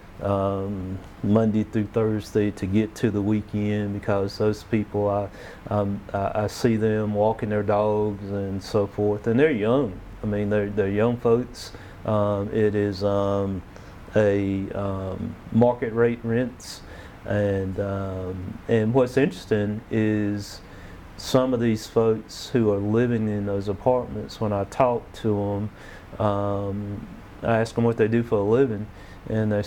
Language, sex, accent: English, male, American